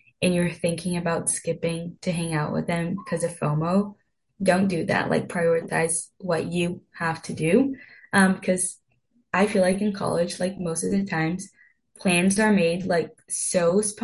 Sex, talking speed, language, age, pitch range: female, 170 wpm, English, 10-29, 165-195 Hz